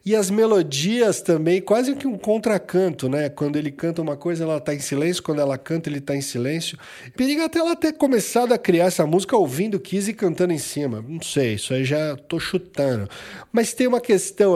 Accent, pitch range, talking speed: Brazilian, 130-185 Hz, 210 wpm